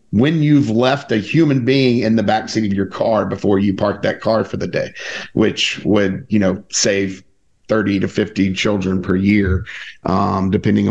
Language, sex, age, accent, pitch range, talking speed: English, male, 40-59, American, 95-115 Hz, 180 wpm